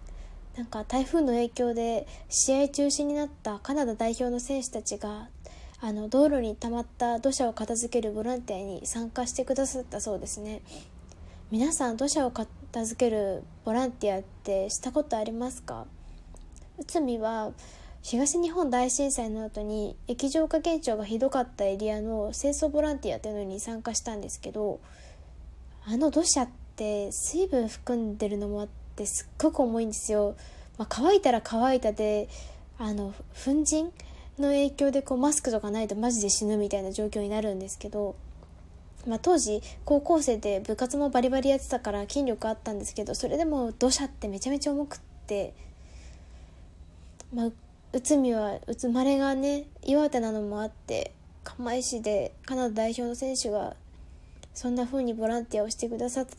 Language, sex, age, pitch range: Japanese, female, 10-29, 205-260 Hz